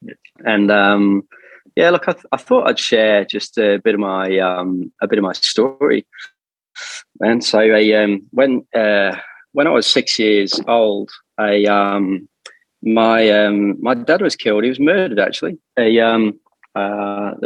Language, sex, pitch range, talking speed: English, male, 100-110 Hz, 165 wpm